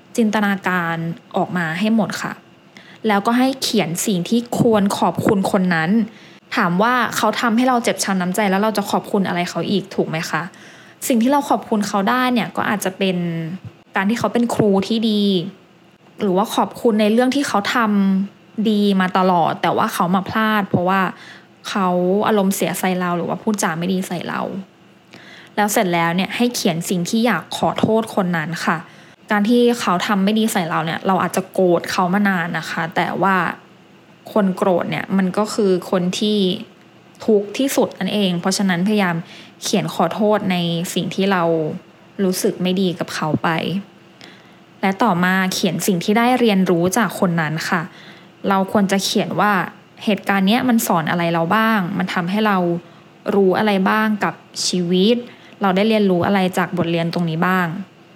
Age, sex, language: 10-29, female, English